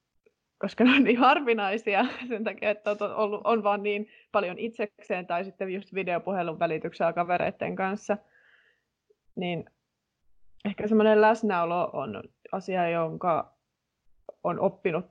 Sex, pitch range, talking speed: female, 170-210 Hz, 120 wpm